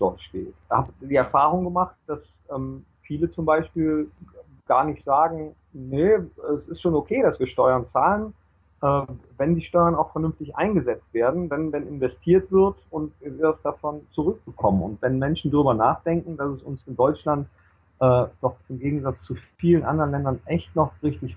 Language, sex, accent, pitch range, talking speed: German, male, German, 125-165 Hz, 180 wpm